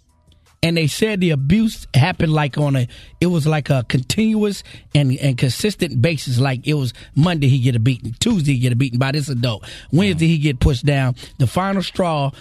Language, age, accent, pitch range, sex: Japanese, 30-49, American, 125-170 Hz, male